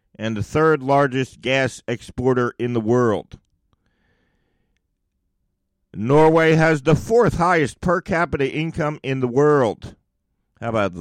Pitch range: 120-165 Hz